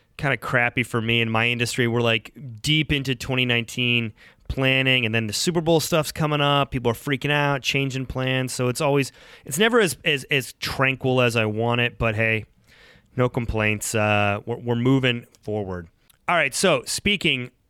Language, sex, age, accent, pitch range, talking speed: English, male, 30-49, American, 115-145 Hz, 185 wpm